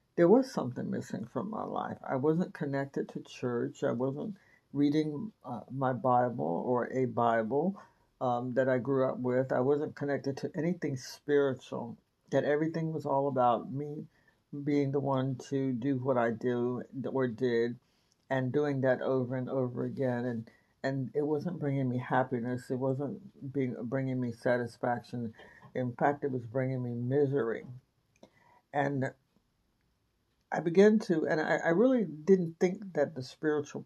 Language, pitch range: English, 125-145 Hz